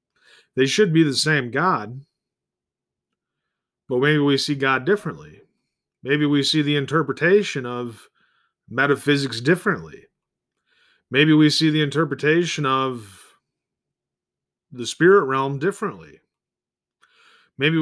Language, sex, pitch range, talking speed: English, male, 130-160 Hz, 105 wpm